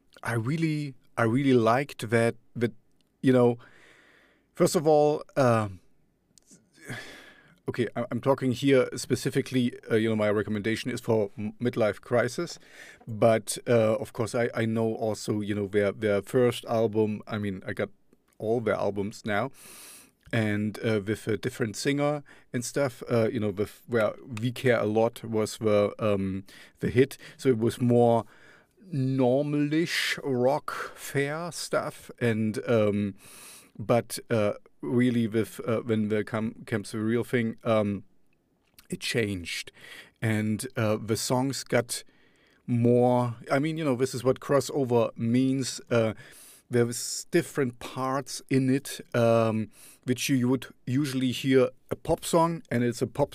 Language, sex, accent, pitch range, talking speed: English, male, German, 110-130 Hz, 145 wpm